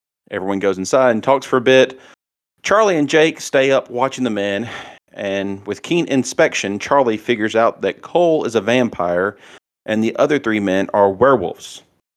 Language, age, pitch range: English, 40-59, 100-125 Hz